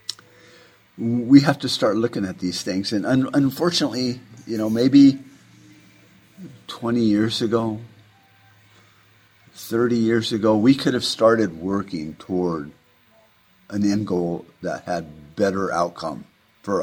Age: 50-69